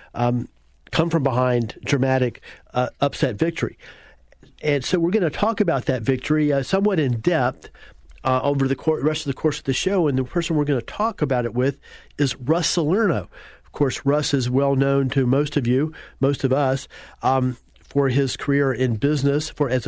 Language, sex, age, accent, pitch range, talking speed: English, male, 40-59, American, 125-155 Hz, 195 wpm